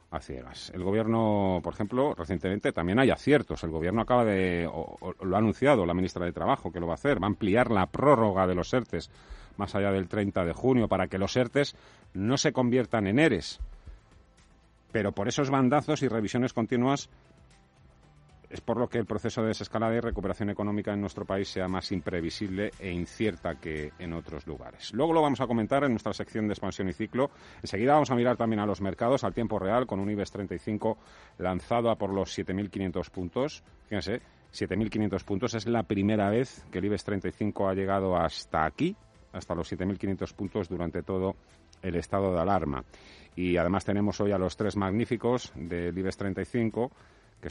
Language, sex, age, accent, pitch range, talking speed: Spanish, male, 40-59, Spanish, 90-120 Hz, 185 wpm